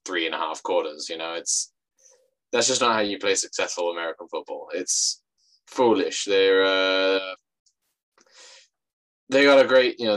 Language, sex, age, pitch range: English, male, 20-39, 95-130 Hz